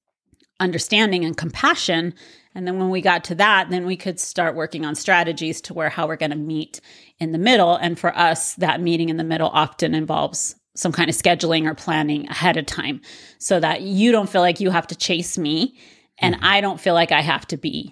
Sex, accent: female, American